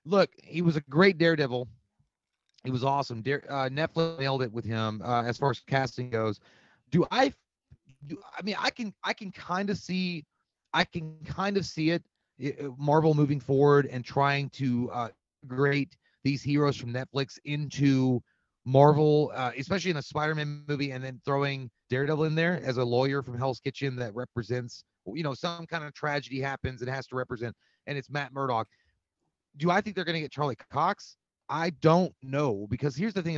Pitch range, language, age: 125-160 Hz, English, 30-49